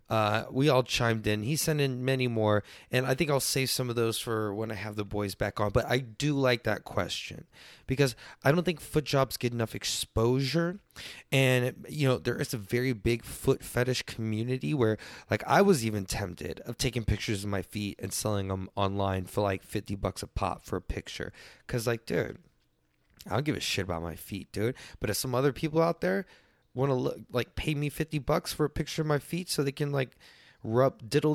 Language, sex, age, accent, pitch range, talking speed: English, male, 20-39, American, 110-165 Hz, 220 wpm